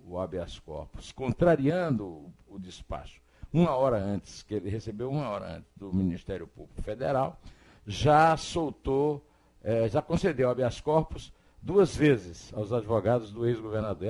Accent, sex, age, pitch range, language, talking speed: Brazilian, male, 60-79, 100-130 Hz, Portuguese, 140 wpm